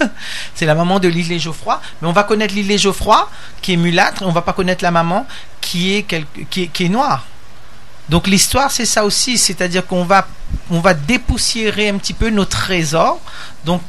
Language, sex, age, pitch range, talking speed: French, male, 40-59, 140-190 Hz, 220 wpm